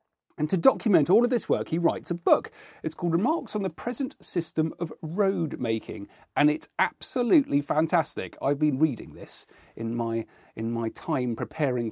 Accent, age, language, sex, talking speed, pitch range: British, 40-59, English, male, 175 wpm, 125-195 Hz